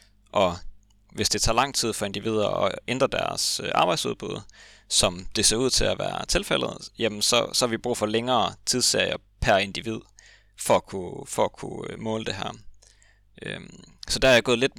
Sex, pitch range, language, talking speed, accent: male, 100-115 Hz, Danish, 185 wpm, native